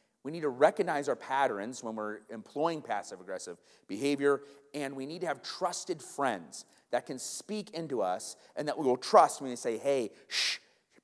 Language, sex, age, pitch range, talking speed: English, male, 30-49, 120-165 Hz, 190 wpm